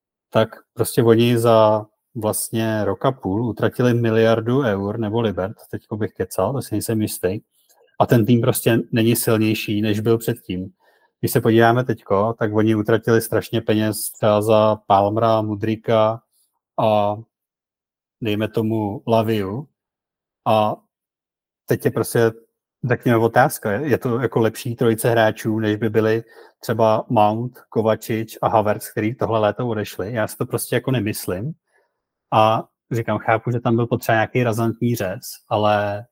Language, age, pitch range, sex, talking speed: Czech, 30-49, 105-115 Hz, male, 145 wpm